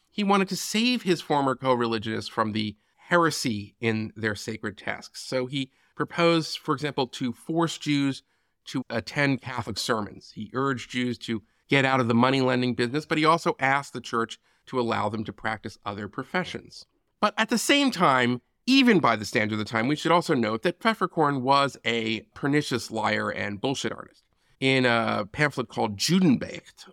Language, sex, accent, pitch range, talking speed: English, male, American, 110-145 Hz, 175 wpm